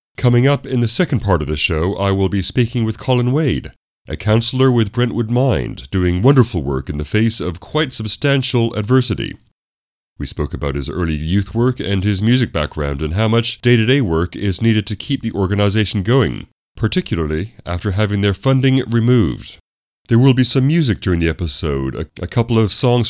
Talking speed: 185 wpm